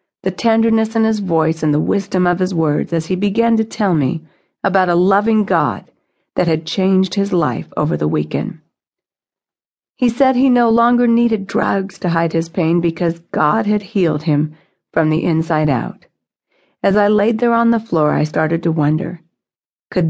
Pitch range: 160-215 Hz